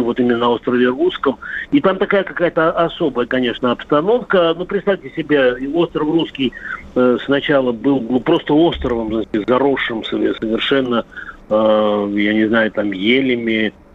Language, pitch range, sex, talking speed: Russian, 115-150 Hz, male, 120 wpm